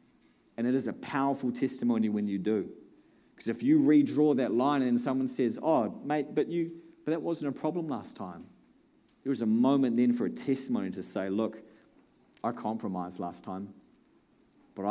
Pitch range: 100-130 Hz